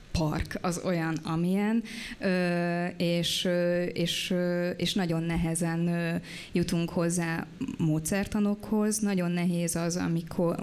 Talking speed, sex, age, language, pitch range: 95 wpm, female, 20-39, Hungarian, 170-185 Hz